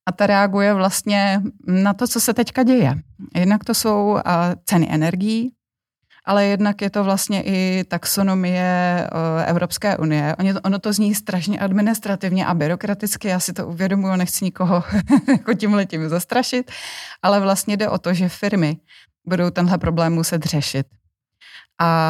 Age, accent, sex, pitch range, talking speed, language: 30-49, native, female, 160-190 Hz, 145 wpm, Czech